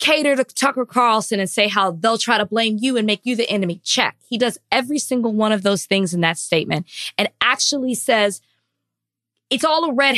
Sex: female